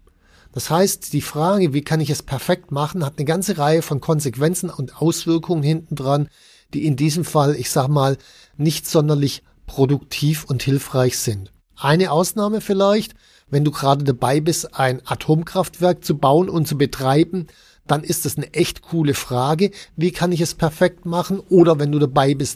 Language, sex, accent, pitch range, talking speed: German, male, German, 130-170 Hz, 175 wpm